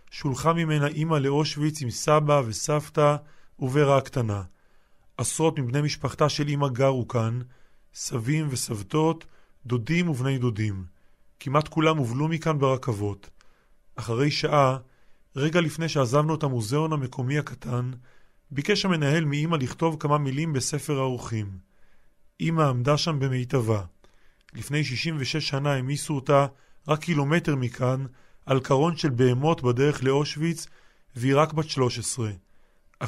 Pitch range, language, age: 125-155 Hz, Hebrew, 30-49